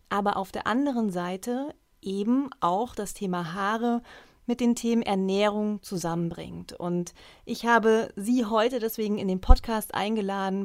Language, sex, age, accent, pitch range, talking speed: German, female, 30-49, German, 195-230 Hz, 140 wpm